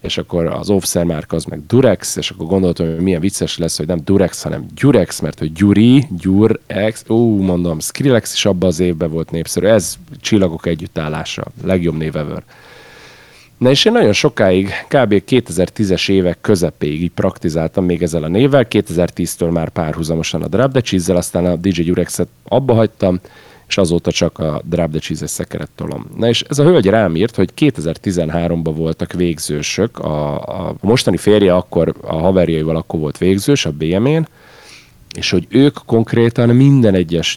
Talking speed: 165 wpm